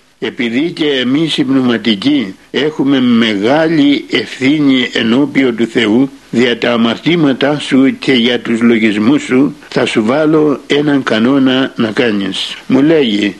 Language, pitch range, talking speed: Greek, 125-155 Hz, 125 wpm